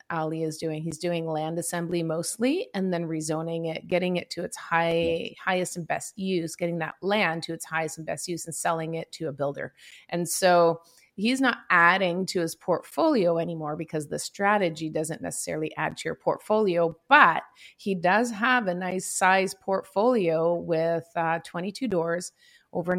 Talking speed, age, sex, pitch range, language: 175 wpm, 30-49, female, 165-205 Hz, English